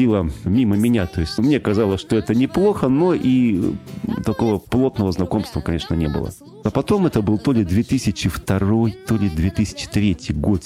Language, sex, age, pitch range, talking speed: Russian, male, 30-49, 85-115 Hz, 160 wpm